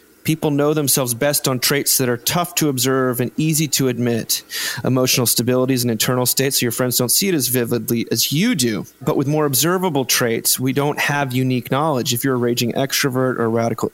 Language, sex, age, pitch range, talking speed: English, male, 30-49, 125-145 Hz, 205 wpm